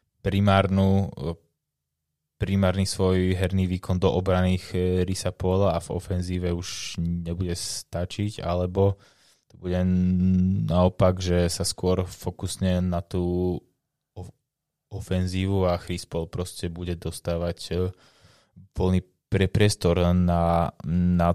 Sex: male